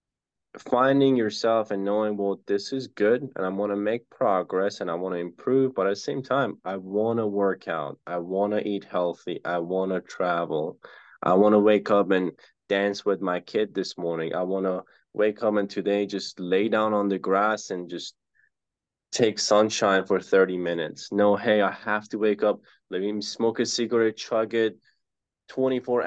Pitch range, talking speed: 100-115 Hz, 195 wpm